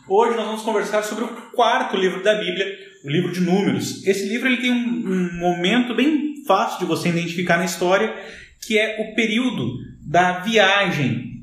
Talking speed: 175 wpm